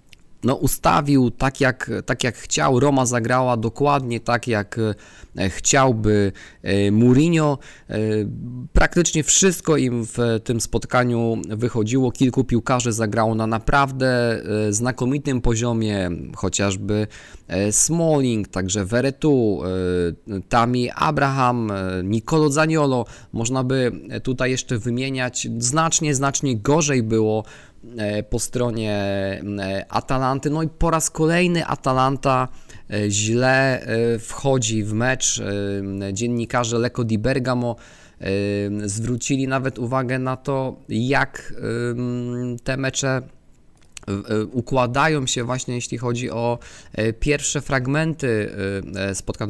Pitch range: 105-130 Hz